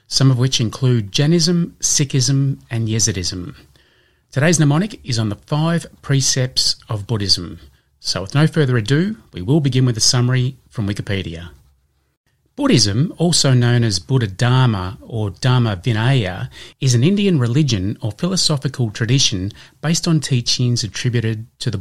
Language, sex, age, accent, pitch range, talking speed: English, male, 30-49, Australian, 110-140 Hz, 145 wpm